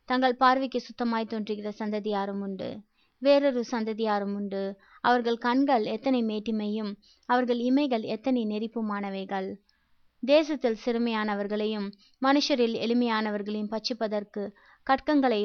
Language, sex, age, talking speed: Tamil, female, 20-39, 90 wpm